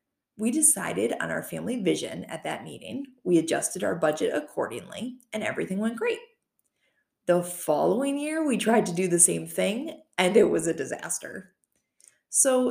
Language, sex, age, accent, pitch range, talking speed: English, female, 30-49, American, 175-250 Hz, 160 wpm